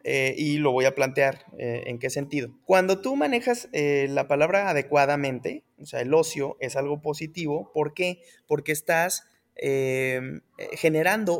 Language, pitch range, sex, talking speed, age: Spanish, 145-190 Hz, male, 160 wpm, 20-39